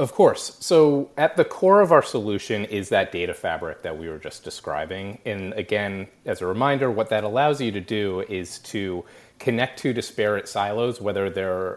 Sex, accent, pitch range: male, American, 95-125 Hz